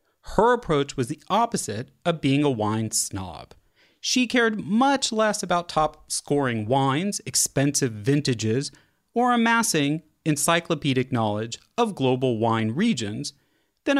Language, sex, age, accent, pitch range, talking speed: English, male, 30-49, American, 120-195 Hz, 120 wpm